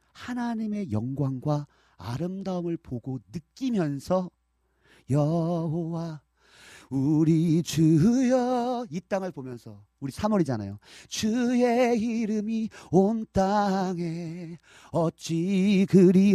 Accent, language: native, Korean